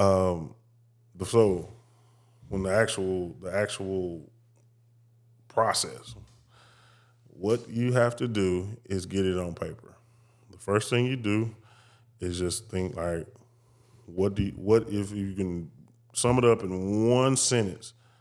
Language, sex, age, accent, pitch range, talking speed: English, male, 10-29, American, 95-115 Hz, 130 wpm